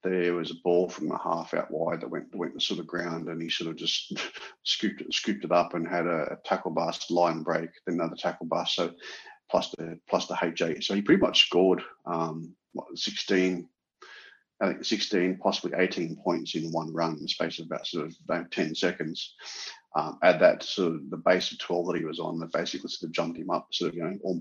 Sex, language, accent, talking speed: male, English, Australian, 230 wpm